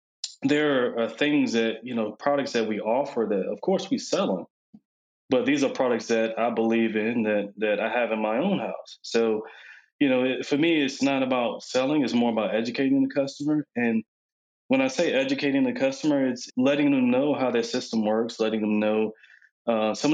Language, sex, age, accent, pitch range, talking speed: English, male, 20-39, American, 115-160 Hz, 205 wpm